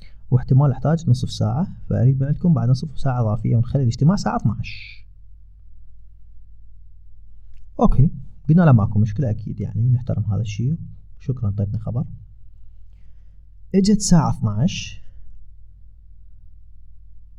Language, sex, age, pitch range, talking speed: Arabic, male, 30-49, 90-135 Hz, 105 wpm